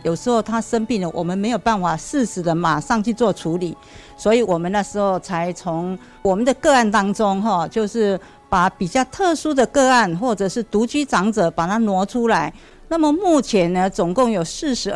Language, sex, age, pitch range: Chinese, female, 50-69, 185-260 Hz